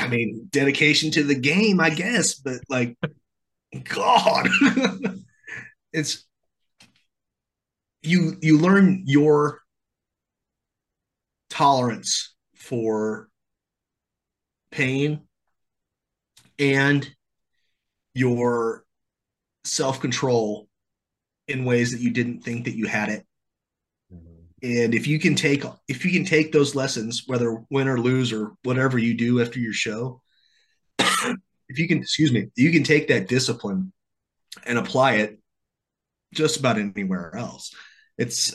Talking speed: 110 wpm